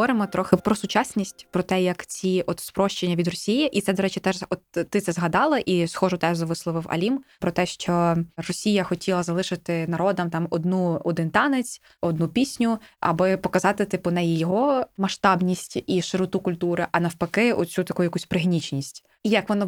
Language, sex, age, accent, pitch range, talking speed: Ukrainian, female, 20-39, native, 170-210 Hz, 175 wpm